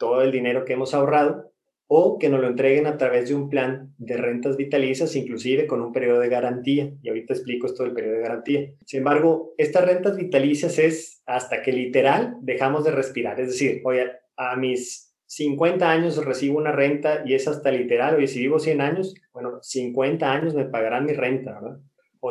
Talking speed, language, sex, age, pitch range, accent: 195 wpm, Spanish, male, 30-49, 130-160 Hz, Mexican